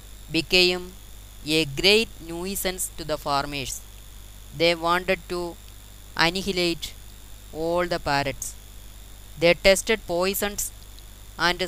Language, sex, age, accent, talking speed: Malayalam, female, 20-39, native, 90 wpm